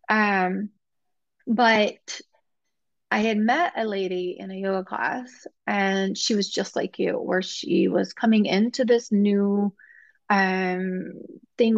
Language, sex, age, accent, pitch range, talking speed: English, female, 30-49, American, 190-225 Hz, 130 wpm